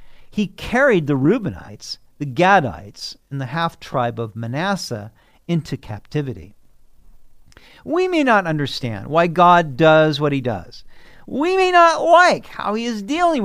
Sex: male